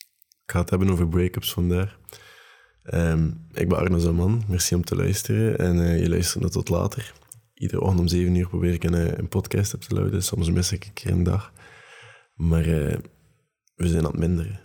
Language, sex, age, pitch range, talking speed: Dutch, male, 20-39, 85-105 Hz, 200 wpm